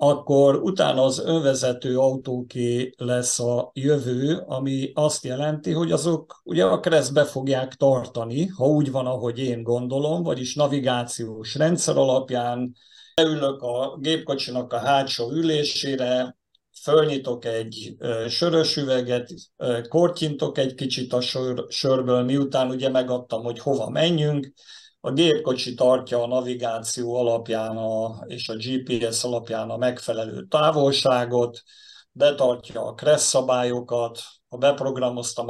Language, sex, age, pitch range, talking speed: Hungarian, male, 50-69, 120-145 Hz, 115 wpm